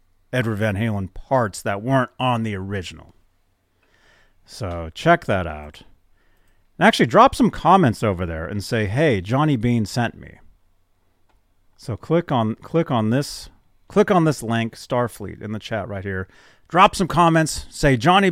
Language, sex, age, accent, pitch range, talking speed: English, male, 30-49, American, 90-120 Hz, 155 wpm